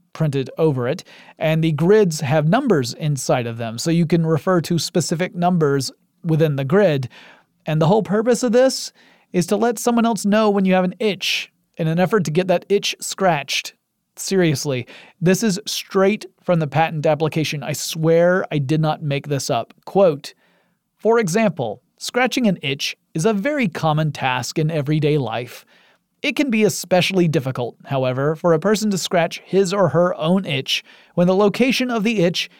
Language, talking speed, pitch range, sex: English, 180 wpm, 155-210 Hz, male